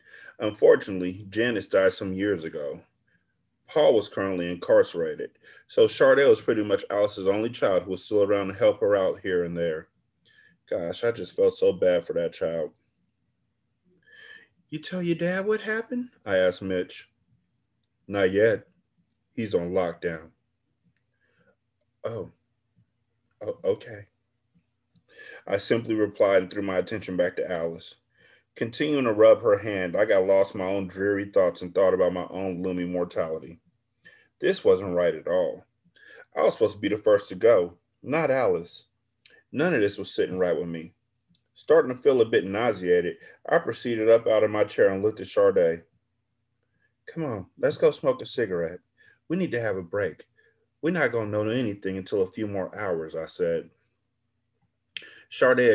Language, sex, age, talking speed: English, male, 30-49, 165 wpm